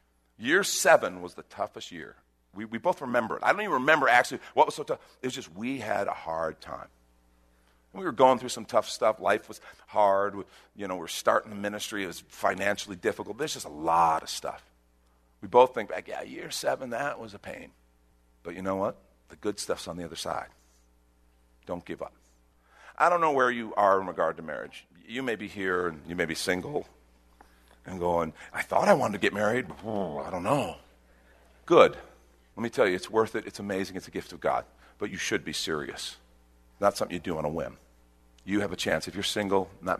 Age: 50-69